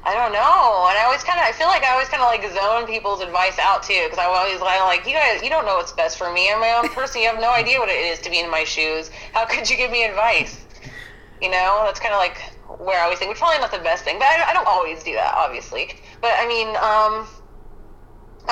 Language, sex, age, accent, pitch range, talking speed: English, female, 20-39, American, 180-240 Hz, 270 wpm